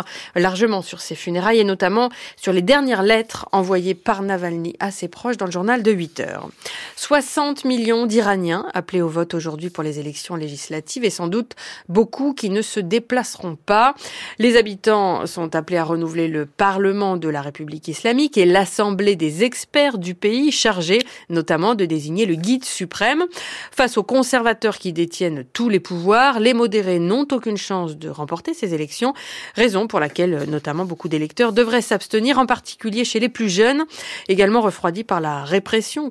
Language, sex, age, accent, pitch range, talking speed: French, female, 30-49, French, 170-230 Hz, 170 wpm